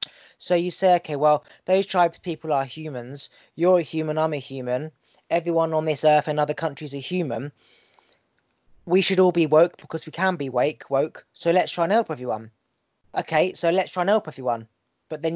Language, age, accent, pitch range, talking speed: English, 20-39, British, 155-185 Hz, 200 wpm